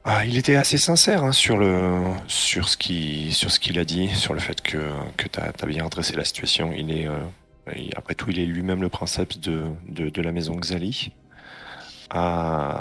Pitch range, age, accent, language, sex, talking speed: 75-95 Hz, 30-49, French, French, male, 205 wpm